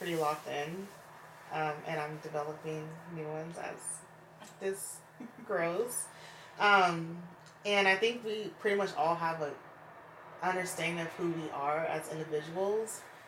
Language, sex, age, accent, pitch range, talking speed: English, female, 30-49, American, 155-180 Hz, 130 wpm